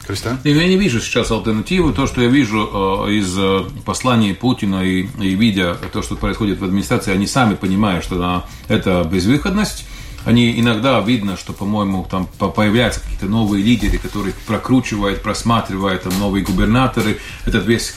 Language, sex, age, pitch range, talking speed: Russian, male, 40-59, 100-125 Hz, 145 wpm